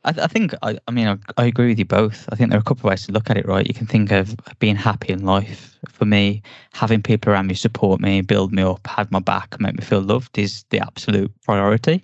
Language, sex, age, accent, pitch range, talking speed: English, male, 10-29, British, 100-120 Hz, 280 wpm